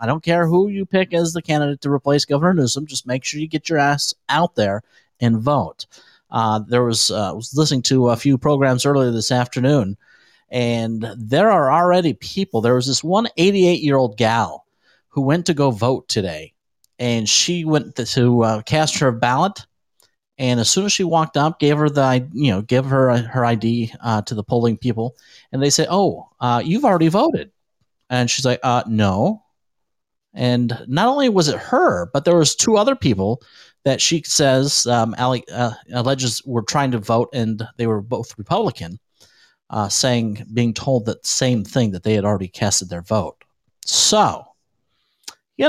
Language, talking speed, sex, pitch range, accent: English, 190 wpm, male, 115-150 Hz, American